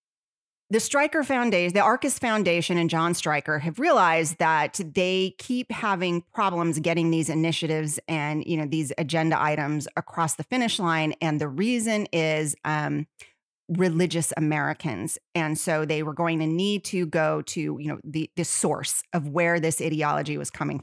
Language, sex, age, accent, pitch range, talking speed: English, female, 30-49, American, 155-180 Hz, 165 wpm